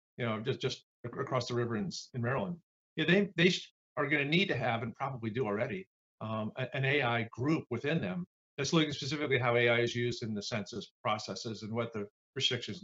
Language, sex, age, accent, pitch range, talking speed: English, male, 50-69, American, 115-160 Hz, 205 wpm